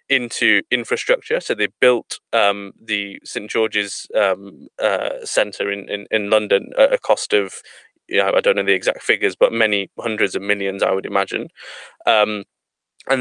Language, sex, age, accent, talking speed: English, male, 20-39, British, 175 wpm